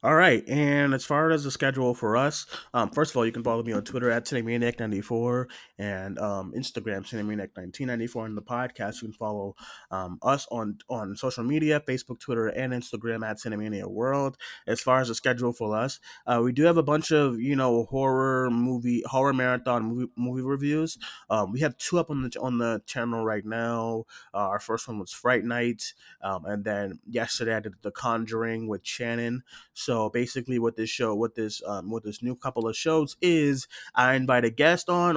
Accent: American